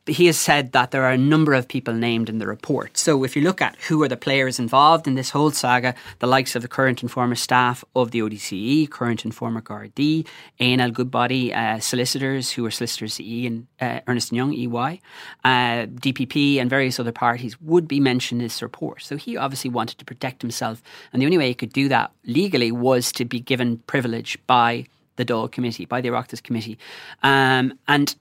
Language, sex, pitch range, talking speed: English, male, 120-135 Hz, 215 wpm